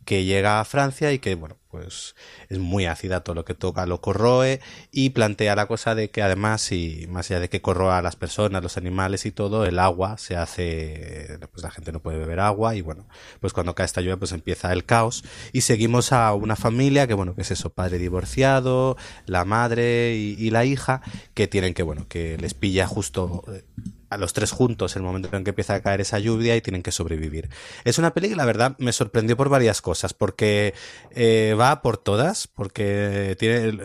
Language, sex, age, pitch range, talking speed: Spanish, male, 30-49, 95-115 Hz, 215 wpm